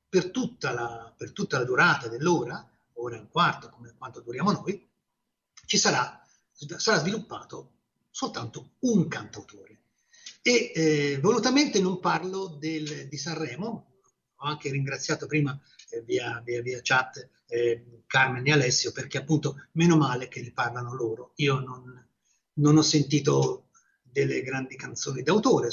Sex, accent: male, native